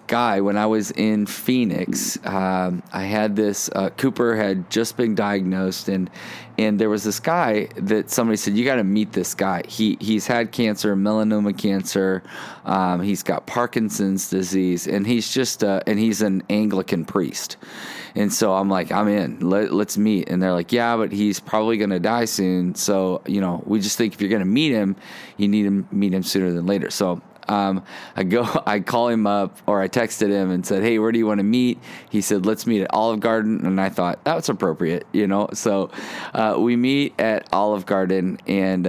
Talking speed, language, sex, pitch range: 210 wpm, English, male, 95-110 Hz